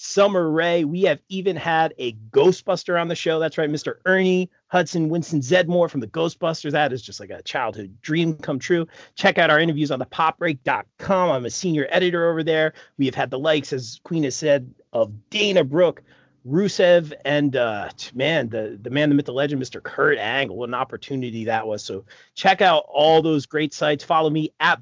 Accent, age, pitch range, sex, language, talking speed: American, 40-59, 135-165 Hz, male, English, 200 wpm